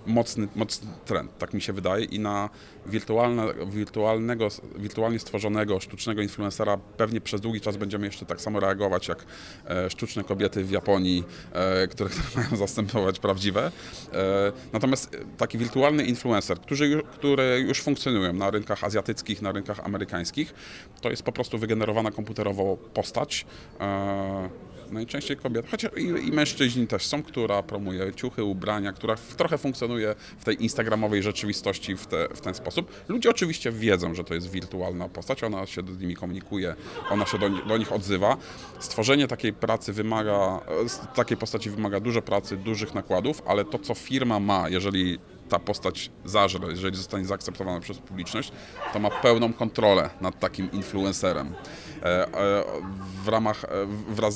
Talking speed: 150 wpm